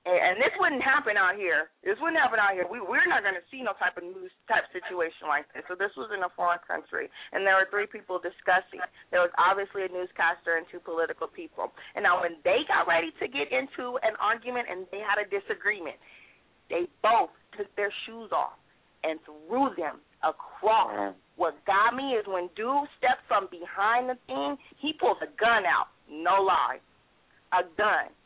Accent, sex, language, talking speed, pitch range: American, female, English, 200 wpm, 175-245 Hz